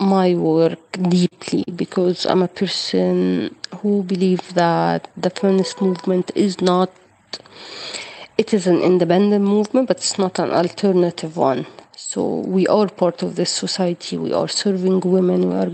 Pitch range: 170-185 Hz